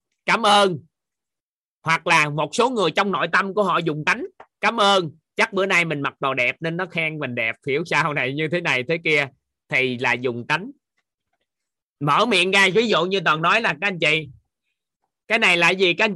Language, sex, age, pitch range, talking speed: Vietnamese, male, 20-39, 155-200 Hz, 205 wpm